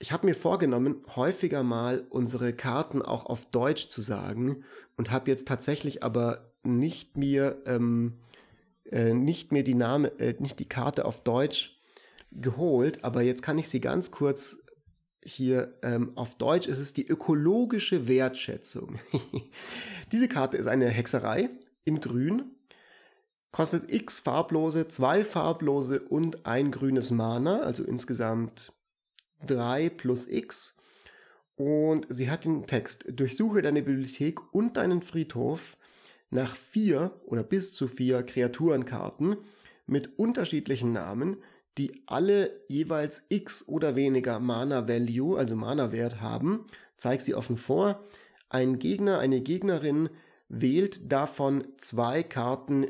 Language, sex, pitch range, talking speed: German, male, 125-165 Hz, 130 wpm